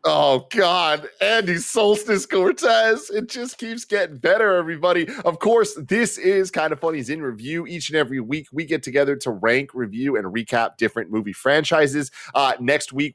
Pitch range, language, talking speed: 110-145 Hz, English, 175 wpm